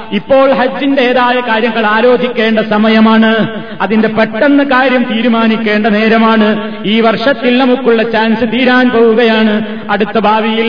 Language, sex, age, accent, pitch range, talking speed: Malayalam, male, 30-49, native, 220-245 Hz, 100 wpm